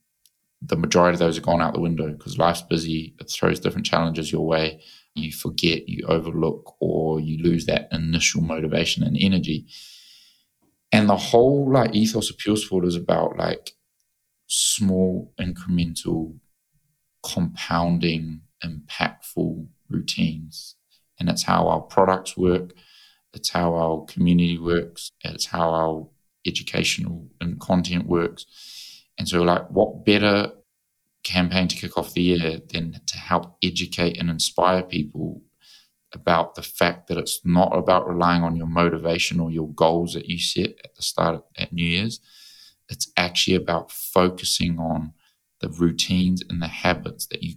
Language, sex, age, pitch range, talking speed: English, male, 20-39, 80-90 Hz, 150 wpm